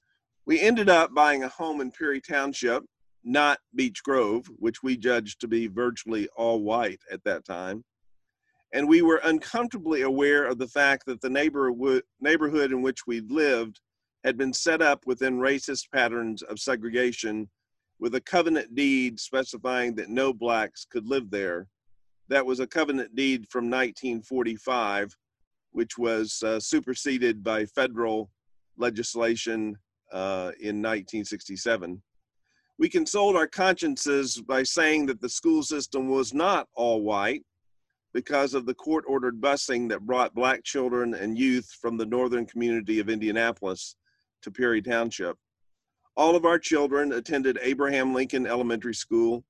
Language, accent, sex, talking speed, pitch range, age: English, American, male, 145 wpm, 115-140 Hz, 40-59